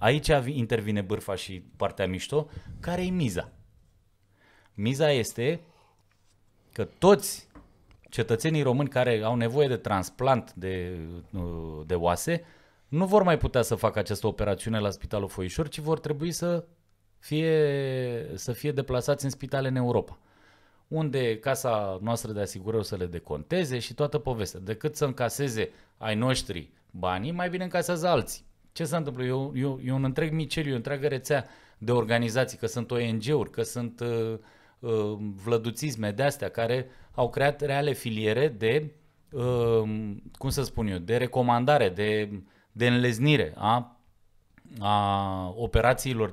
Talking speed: 140 wpm